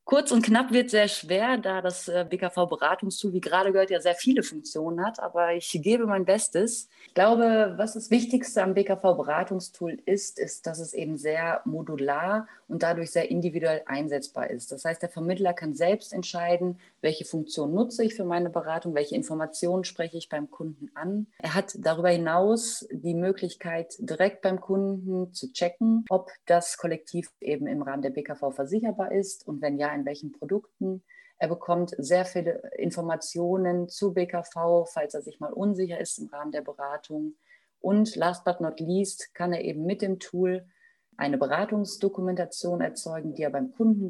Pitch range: 160-200 Hz